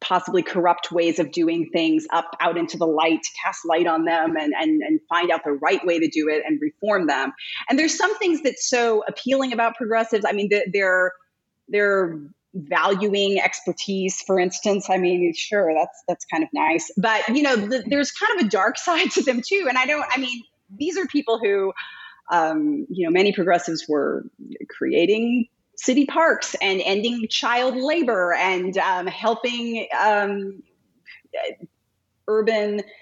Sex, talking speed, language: female, 170 wpm, English